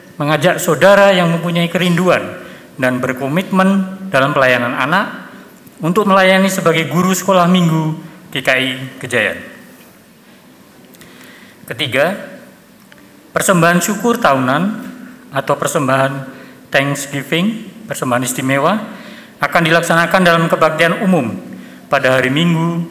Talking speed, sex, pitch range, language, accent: 90 wpm, male, 140-185 Hz, Indonesian, native